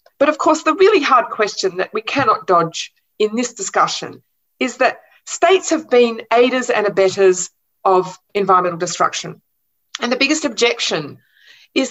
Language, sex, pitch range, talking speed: Finnish, female, 195-300 Hz, 150 wpm